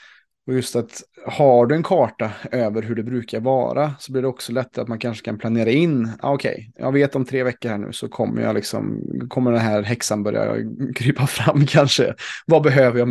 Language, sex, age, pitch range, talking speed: Swedish, male, 20-39, 115-135 Hz, 215 wpm